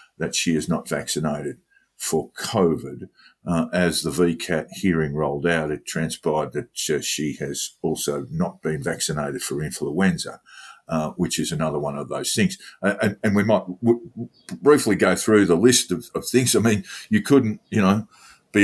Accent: Australian